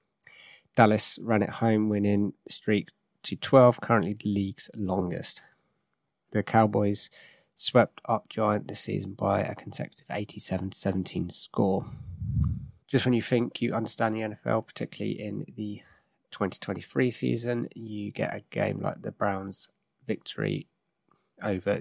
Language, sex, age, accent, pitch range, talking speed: English, male, 20-39, British, 100-115 Hz, 125 wpm